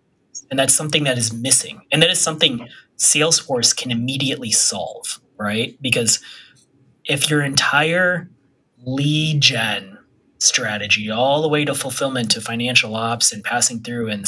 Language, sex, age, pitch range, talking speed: English, male, 30-49, 115-145 Hz, 145 wpm